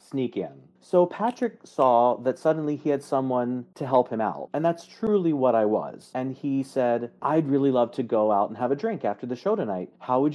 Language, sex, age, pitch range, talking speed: English, male, 40-59, 115-165 Hz, 225 wpm